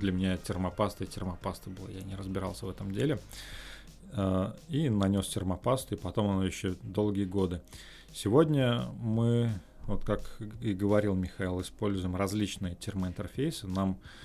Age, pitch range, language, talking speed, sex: 20-39, 95-105 Hz, Russian, 135 wpm, male